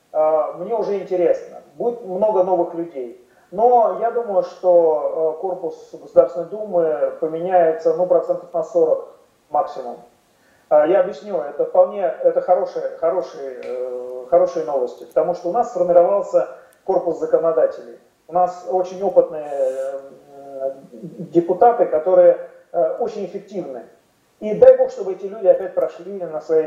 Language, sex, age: Russian, male, 40-59